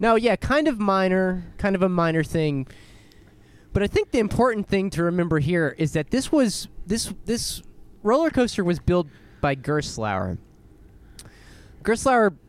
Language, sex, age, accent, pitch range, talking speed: English, male, 20-39, American, 135-190 Hz, 155 wpm